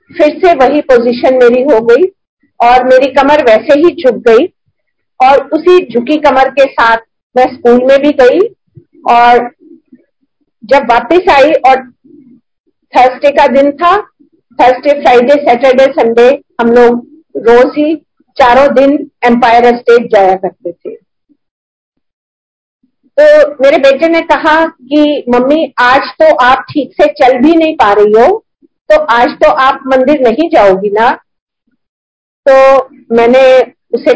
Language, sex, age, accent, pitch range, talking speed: Hindi, female, 50-69, native, 250-320 Hz, 135 wpm